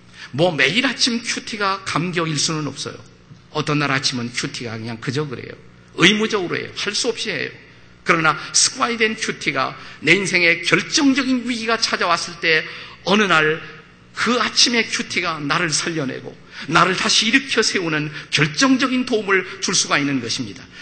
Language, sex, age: Korean, male, 50-69